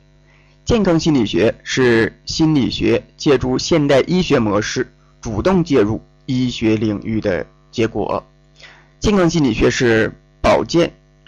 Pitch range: 110-155 Hz